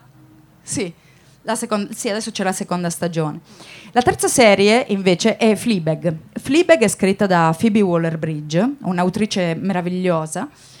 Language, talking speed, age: Italian, 135 wpm, 30-49